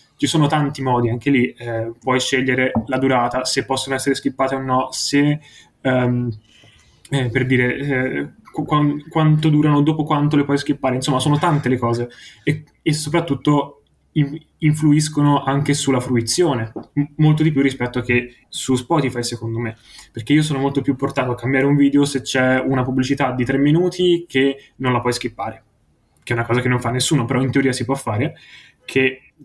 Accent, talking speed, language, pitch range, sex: native, 175 wpm, Italian, 125-145 Hz, male